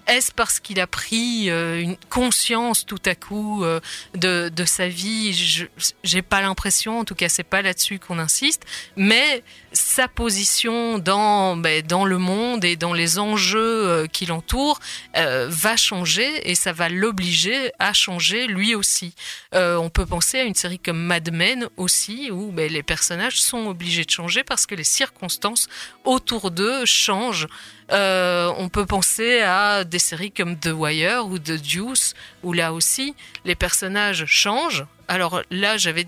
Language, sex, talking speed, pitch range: French, female, 165 wpm, 175-215 Hz